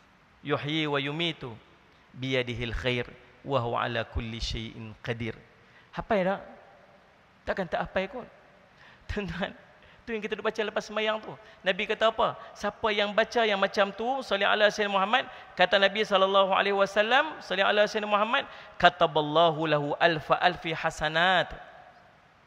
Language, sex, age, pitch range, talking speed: Malay, male, 40-59, 145-215 Hz, 135 wpm